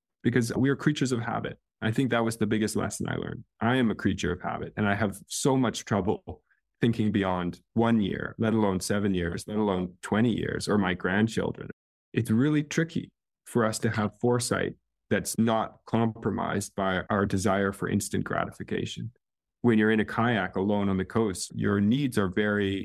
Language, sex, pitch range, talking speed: English, male, 100-115 Hz, 190 wpm